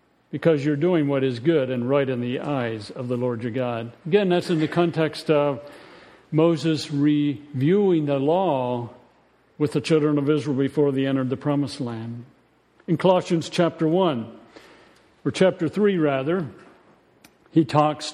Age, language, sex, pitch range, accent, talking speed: 50-69, English, male, 135-170 Hz, American, 155 wpm